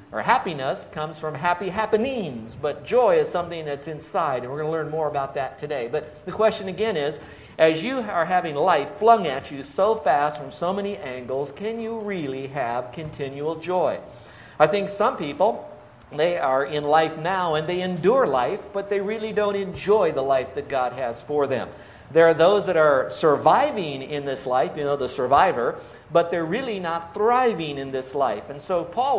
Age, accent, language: 50-69, American, English